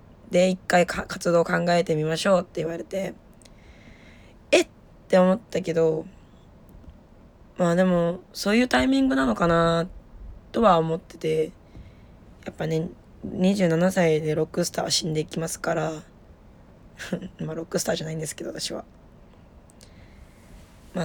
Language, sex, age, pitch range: Japanese, female, 20-39, 160-195 Hz